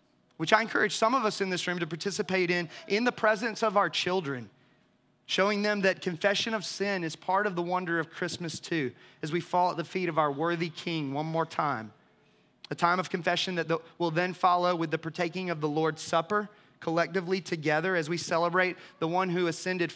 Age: 30-49